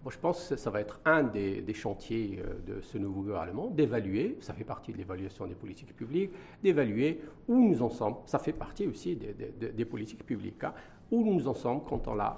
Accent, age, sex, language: French, 50-69, male, French